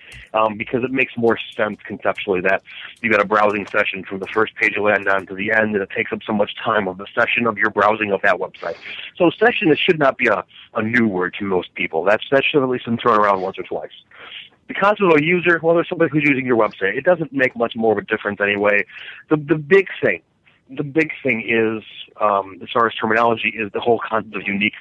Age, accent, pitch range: 40-59, American, 105-135 Hz